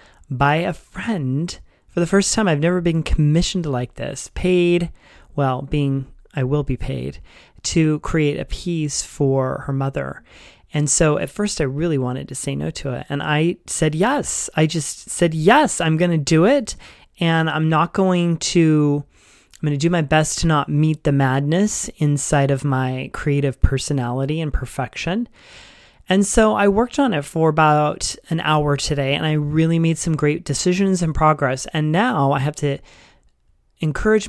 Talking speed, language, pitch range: 175 wpm, English, 140-170 Hz